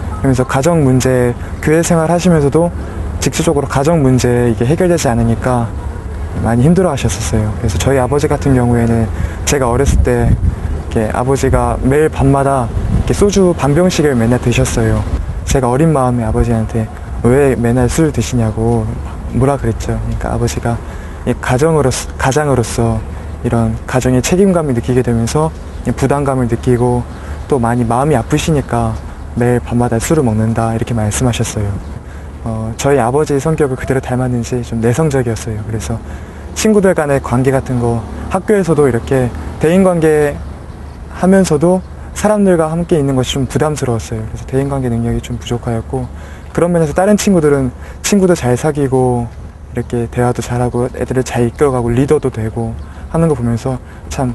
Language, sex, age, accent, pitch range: Korean, male, 20-39, native, 115-140 Hz